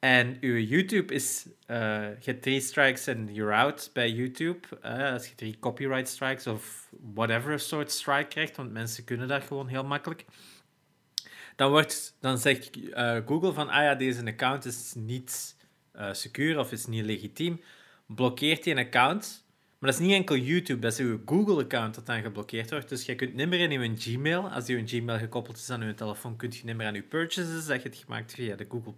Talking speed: 210 wpm